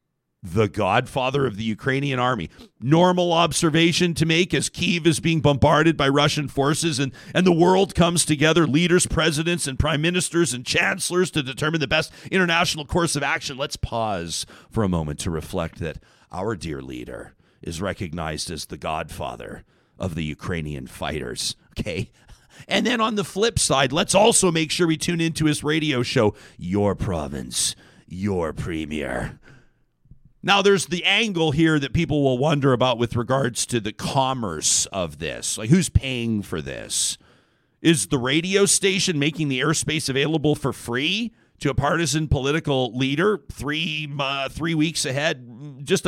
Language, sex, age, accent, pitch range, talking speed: English, male, 40-59, American, 120-165 Hz, 160 wpm